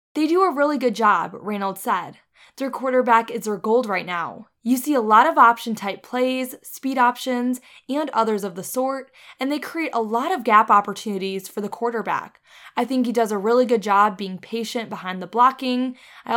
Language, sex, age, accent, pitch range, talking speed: English, female, 10-29, American, 205-255 Hz, 200 wpm